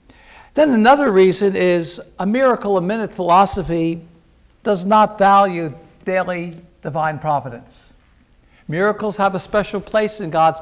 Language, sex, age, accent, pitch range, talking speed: English, male, 60-79, American, 170-210 Hz, 125 wpm